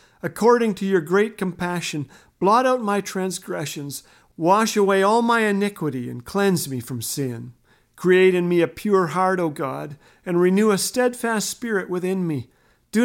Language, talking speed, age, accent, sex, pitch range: English, 160 wpm, 50-69, American, male, 155-200 Hz